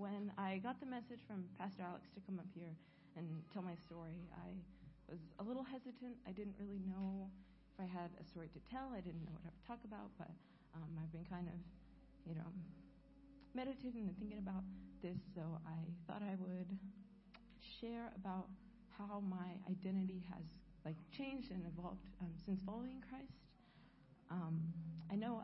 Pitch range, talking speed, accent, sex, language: 170-205 Hz, 175 wpm, American, female, English